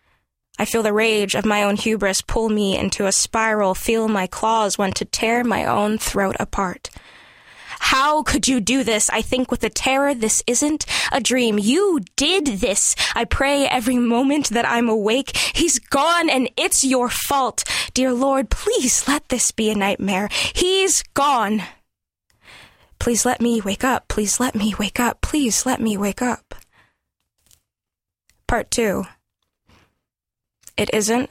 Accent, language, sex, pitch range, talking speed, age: American, English, female, 205-250 Hz, 155 wpm, 10-29